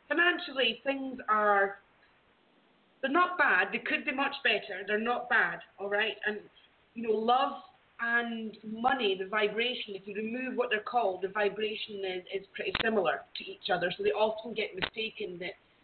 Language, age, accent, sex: English, 30-49, British, female